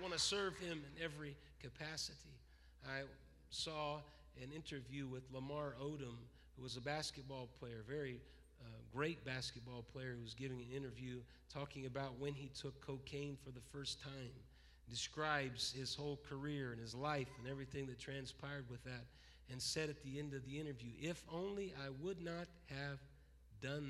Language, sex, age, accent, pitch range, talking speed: English, male, 40-59, American, 125-150 Hz, 170 wpm